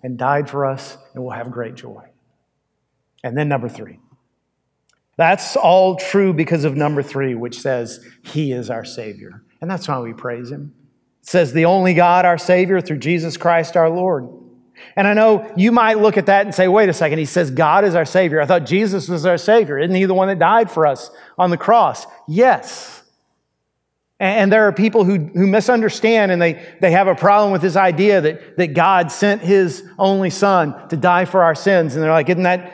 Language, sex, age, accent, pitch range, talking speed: English, male, 40-59, American, 155-195 Hz, 210 wpm